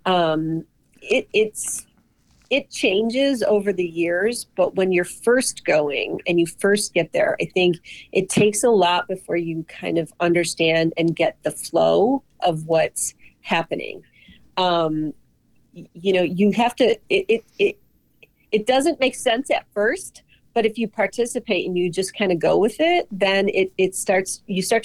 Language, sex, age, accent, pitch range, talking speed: English, female, 40-59, American, 170-220 Hz, 170 wpm